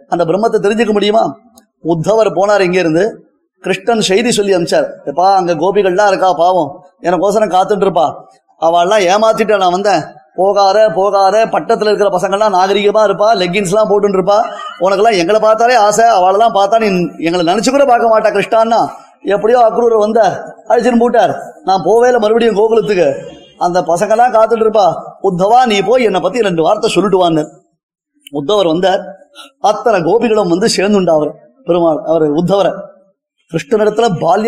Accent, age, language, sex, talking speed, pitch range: native, 20-39, Tamil, male, 130 wpm, 180-230 Hz